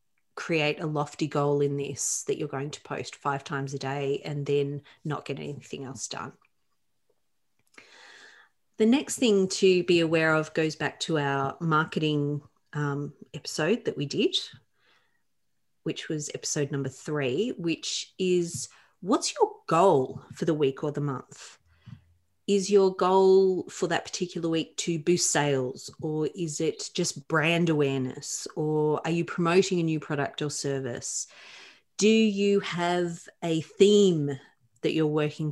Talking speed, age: 150 wpm, 30-49